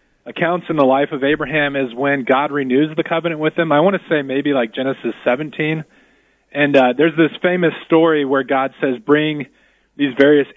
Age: 30-49